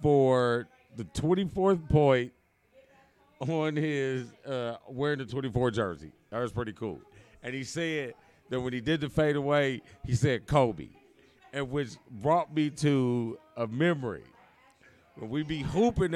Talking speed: 140 wpm